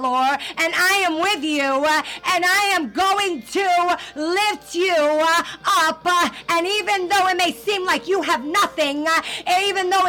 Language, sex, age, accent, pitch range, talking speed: English, female, 50-69, American, 320-370 Hz, 155 wpm